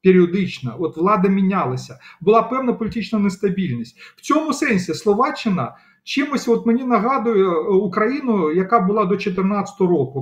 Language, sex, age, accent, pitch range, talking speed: Ukrainian, male, 40-59, native, 175-225 Hz, 125 wpm